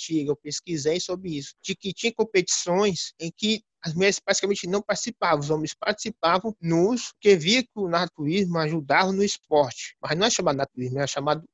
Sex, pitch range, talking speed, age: male, 155-200 Hz, 175 wpm, 20-39